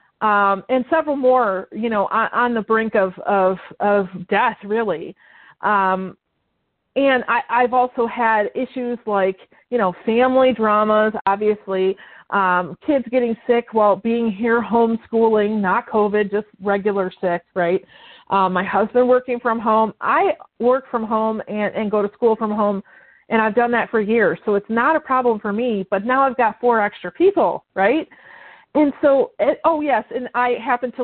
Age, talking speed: 40-59, 165 wpm